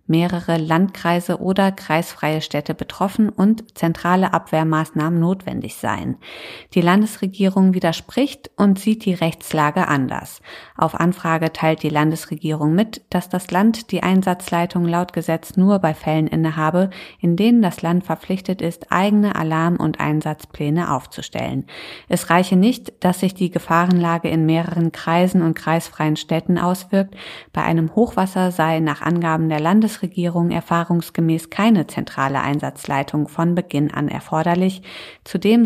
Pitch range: 160-190 Hz